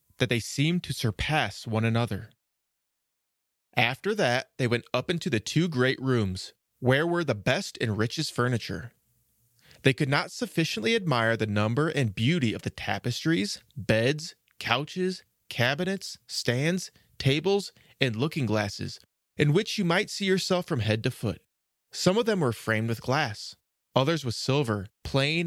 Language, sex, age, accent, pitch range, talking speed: English, male, 30-49, American, 115-155 Hz, 150 wpm